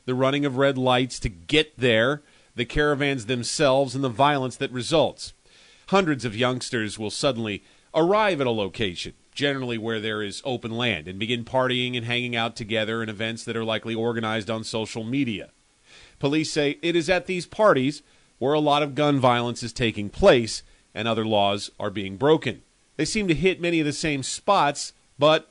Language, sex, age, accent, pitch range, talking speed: English, male, 40-59, American, 115-145 Hz, 185 wpm